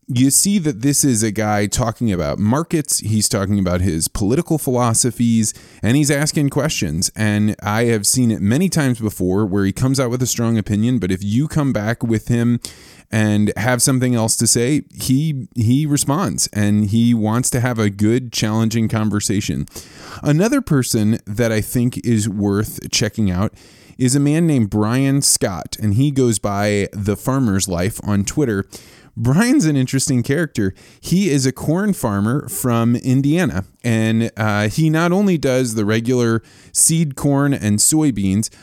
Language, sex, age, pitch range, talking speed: English, male, 20-39, 105-135 Hz, 170 wpm